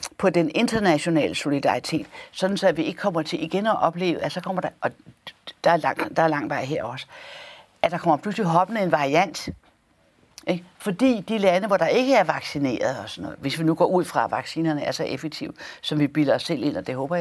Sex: female